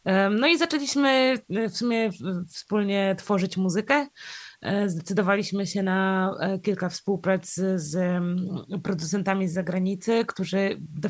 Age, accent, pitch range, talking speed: 20-39, native, 185-210 Hz, 105 wpm